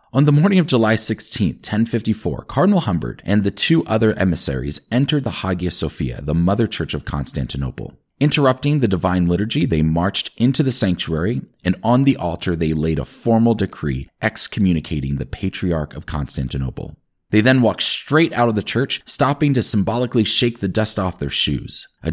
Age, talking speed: 30-49, 175 wpm